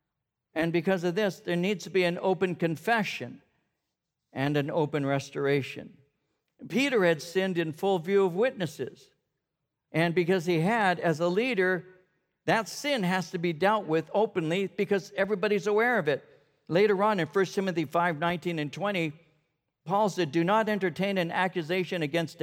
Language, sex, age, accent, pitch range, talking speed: English, male, 60-79, American, 160-210 Hz, 160 wpm